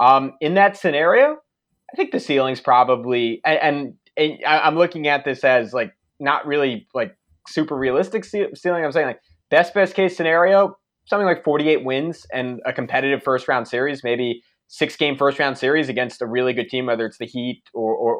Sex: male